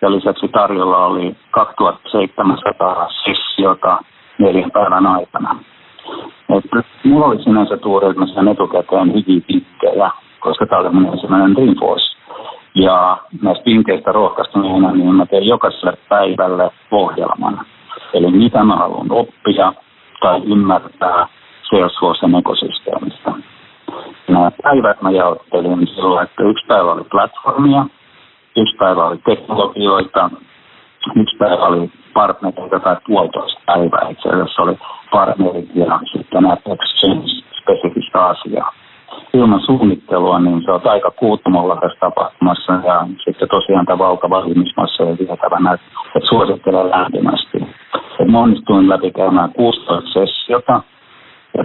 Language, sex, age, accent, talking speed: Finnish, male, 50-69, native, 105 wpm